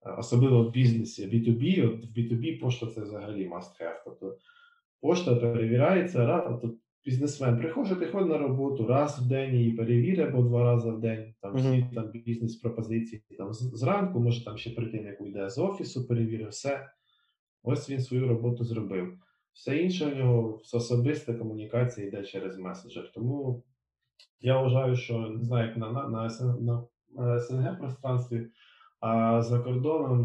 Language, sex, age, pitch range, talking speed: Ukrainian, male, 20-39, 110-130 Hz, 145 wpm